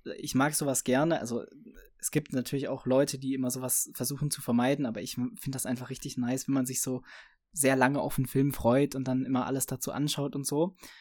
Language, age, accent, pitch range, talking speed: German, 20-39, German, 125-145 Hz, 225 wpm